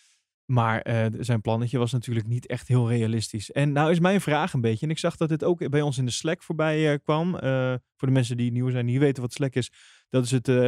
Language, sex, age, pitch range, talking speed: Dutch, male, 20-39, 125-165 Hz, 270 wpm